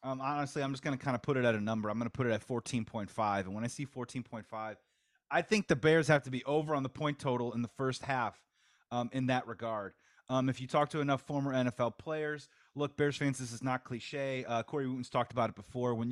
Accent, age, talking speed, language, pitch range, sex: American, 30-49, 255 wpm, English, 120-145 Hz, male